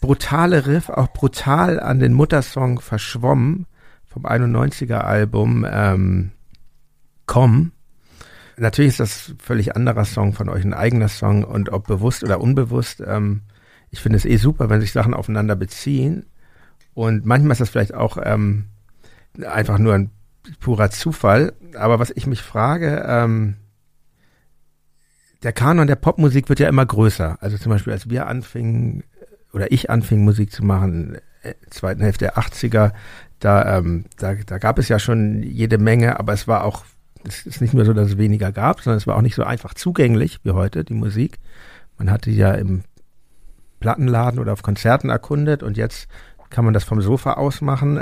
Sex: male